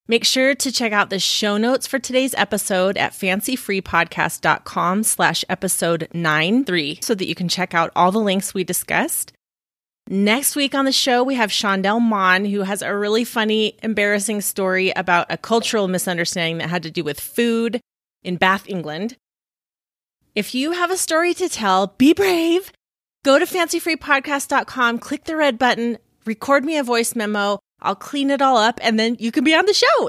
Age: 30-49